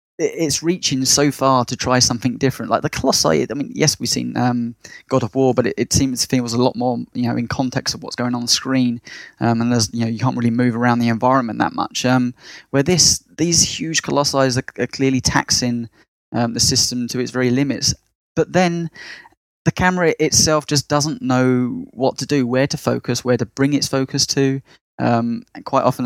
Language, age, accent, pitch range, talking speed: English, 10-29, British, 120-145 Hz, 220 wpm